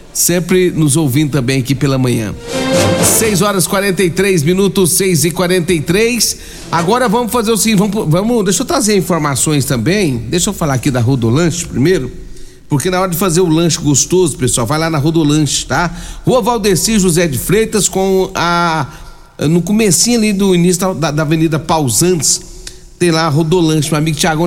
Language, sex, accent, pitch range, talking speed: Portuguese, male, Brazilian, 155-195 Hz, 190 wpm